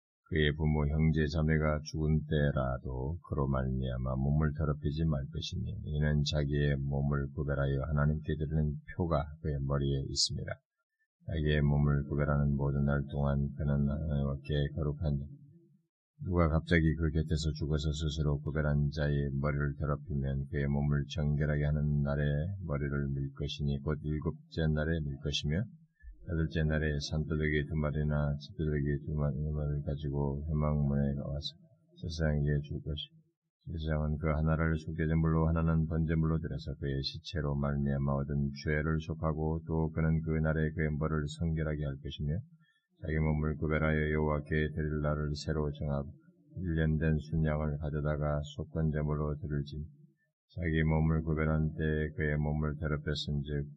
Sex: male